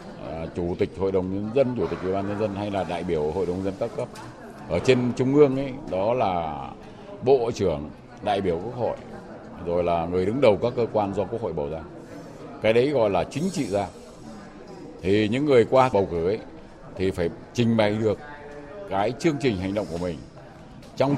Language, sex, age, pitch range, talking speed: Vietnamese, male, 60-79, 95-130 Hz, 210 wpm